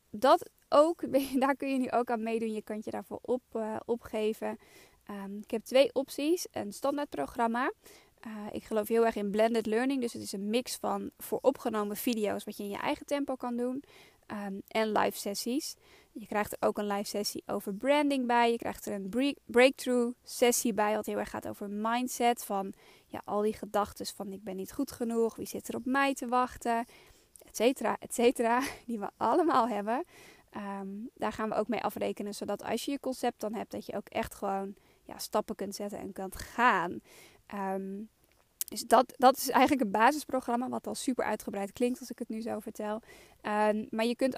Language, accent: Dutch, Dutch